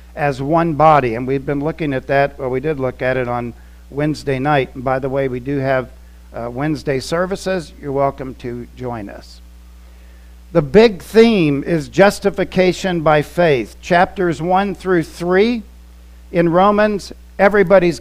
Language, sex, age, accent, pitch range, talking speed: English, male, 50-69, American, 125-180 Hz, 155 wpm